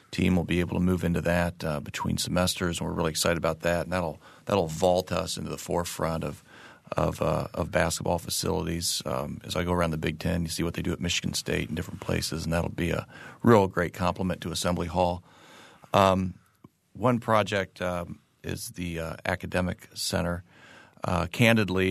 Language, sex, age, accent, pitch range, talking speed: English, male, 40-59, American, 85-95 Hz, 195 wpm